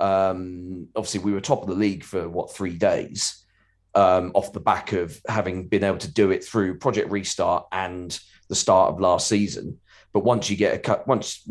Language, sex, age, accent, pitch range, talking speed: English, male, 30-49, British, 90-105 Hz, 205 wpm